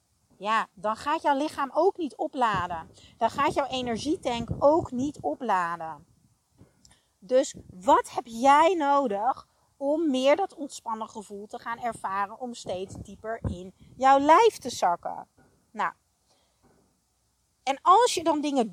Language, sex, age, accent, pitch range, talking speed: Dutch, female, 40-59, Dutch, 210-295 Hz, 135 wpm